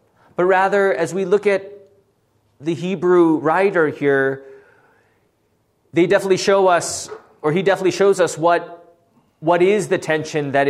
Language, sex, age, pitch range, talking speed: English, male, 30-49, 120-170 Hz, 140 wpm